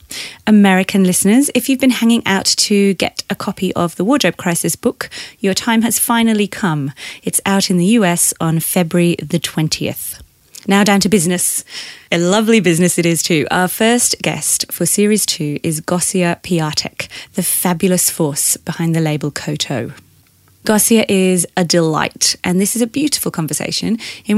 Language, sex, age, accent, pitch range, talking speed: English, female, 30-49, British, 165-205 Hz, 165 wpm